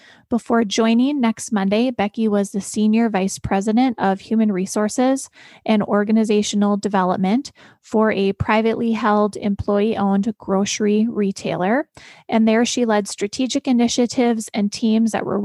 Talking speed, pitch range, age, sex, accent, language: 130 wpm, 200-235 Hz, 20-39, female, American, English